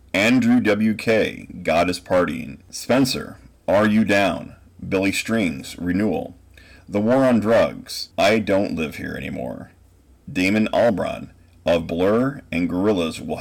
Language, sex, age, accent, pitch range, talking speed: English, male, 30-49, American, 85-95 Hz, 125 wpm